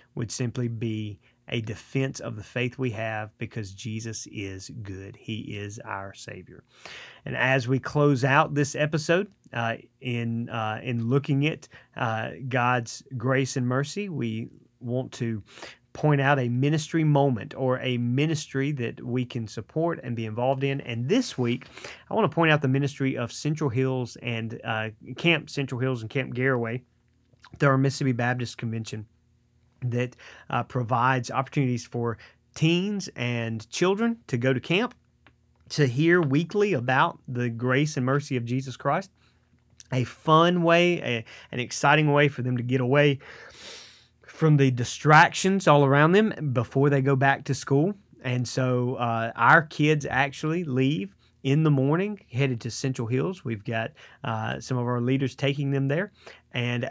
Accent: American